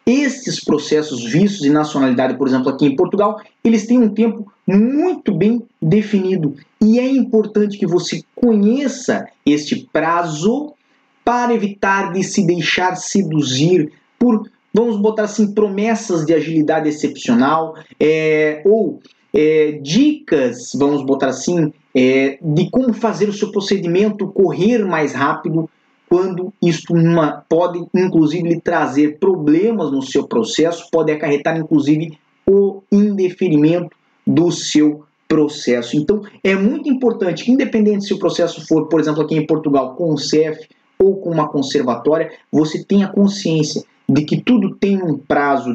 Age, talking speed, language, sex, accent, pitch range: 20-39, 140 wpm, Portuguese, male, Brazilian, 155-215 Hz